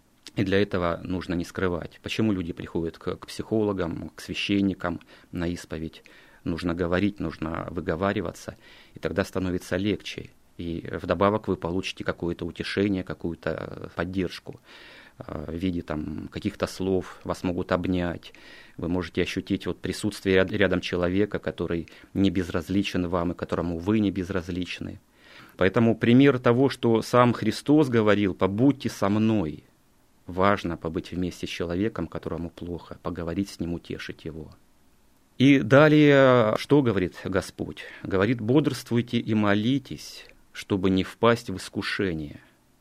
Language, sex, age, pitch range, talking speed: Russian, male, 30-49, 85-110 Hz, 125 wpm